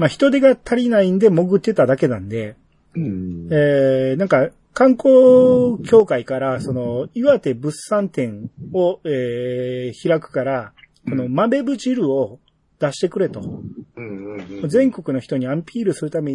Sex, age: male, 40-59